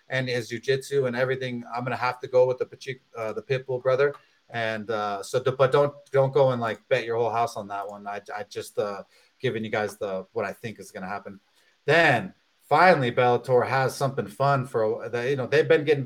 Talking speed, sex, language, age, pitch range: 215 wpm, male, English, 30-49, 130-175 Hz